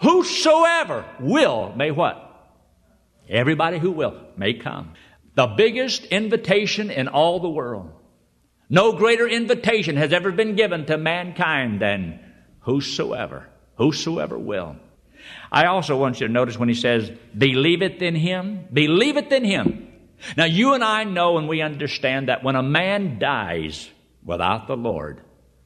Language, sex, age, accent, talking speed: English, male, 60-79, American, 140 wpm